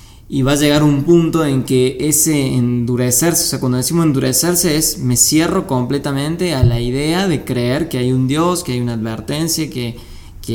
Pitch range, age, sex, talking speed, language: 125-155 Hz, 20-39, male, 195 wpm, Spanish